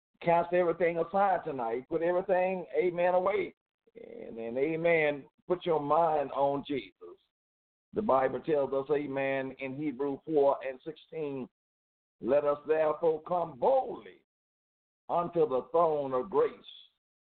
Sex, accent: male, American